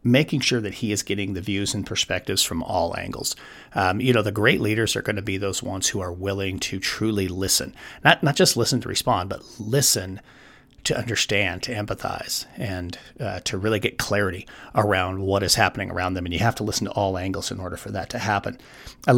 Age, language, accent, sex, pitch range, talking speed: 40-59, English, American, male, 95-115 Hz, 220 wpm